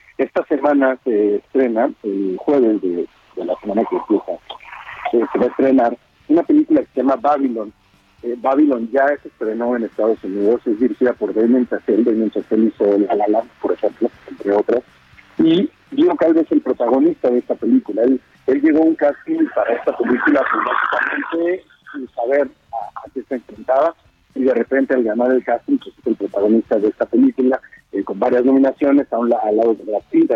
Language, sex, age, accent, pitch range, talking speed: Spanish, male, 50-69, Mexican, 110-155 Hz, 190 wpm